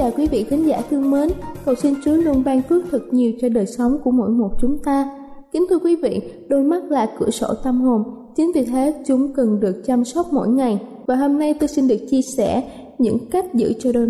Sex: female